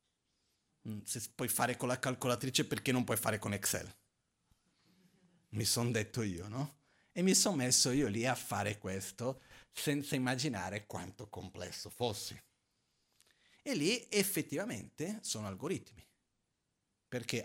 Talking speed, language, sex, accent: 125 wpm, Italian, male, native